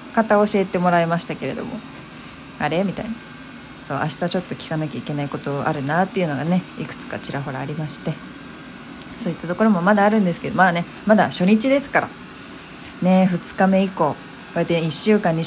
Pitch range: 155-200 Hz